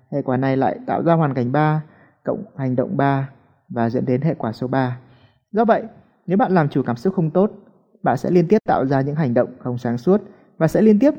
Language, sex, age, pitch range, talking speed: Vietnamese, male, 20-39, 130-170 Hz, 245 wpm